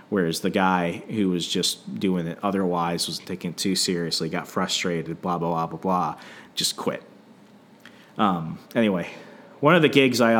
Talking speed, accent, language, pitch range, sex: 175 wpm, American, English, 100-115 Hz, male